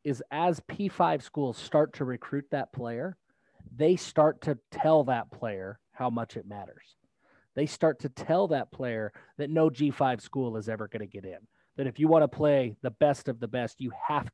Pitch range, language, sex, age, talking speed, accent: 125-155 Hz, English, male, 30-49, 195 wpm, American